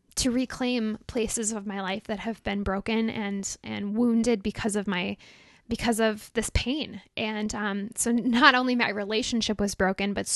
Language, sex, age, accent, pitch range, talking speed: English, female, 10-29, American, 210-245 Hz, 175 wpm